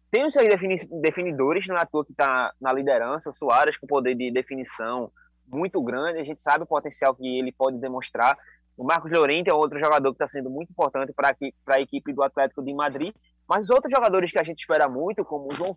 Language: Portuguese